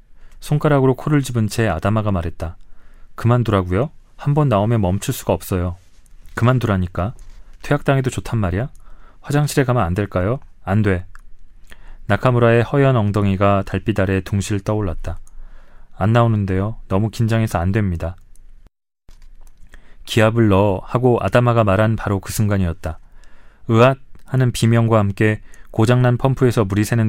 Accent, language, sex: native, Korean, male